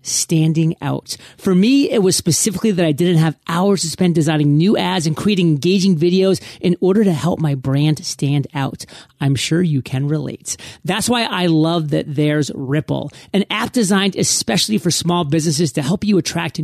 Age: 40-59